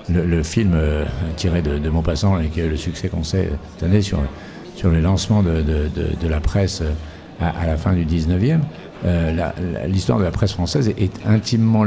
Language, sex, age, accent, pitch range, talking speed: French, male, 60-79, French, 80-105 Hz, 220 wpm